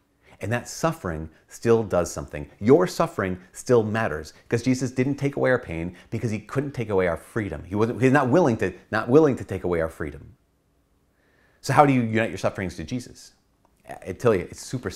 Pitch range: 95-140 Hz